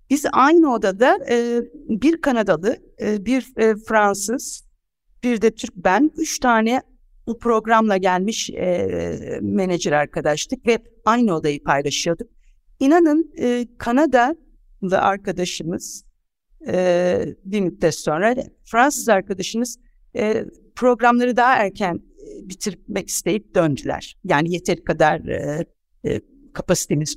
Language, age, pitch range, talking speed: Turkish, 60-79, 190-260 Hz, 85 wpm